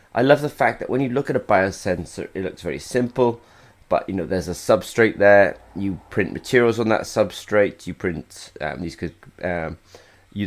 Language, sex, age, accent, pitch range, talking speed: English, male, 30-49, British, 90-110 Hz, 200 wpm